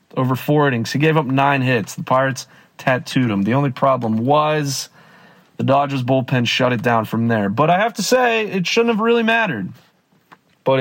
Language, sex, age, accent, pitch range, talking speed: English, male, 30-49, American, 120-150 Hz, 195 wpm